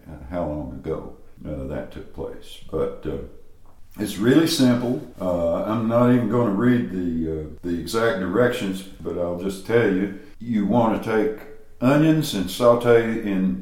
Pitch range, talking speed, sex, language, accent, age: 90-115 Hz, 165 wpm, male, English, American, 60-79